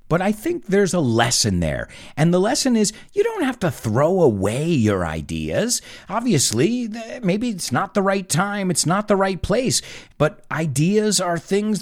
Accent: American